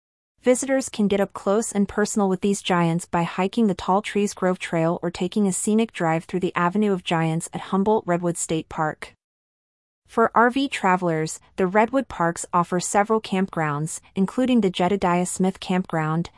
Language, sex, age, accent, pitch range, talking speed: English, female, 30-49, American, 170-200 Hz, 170 wpm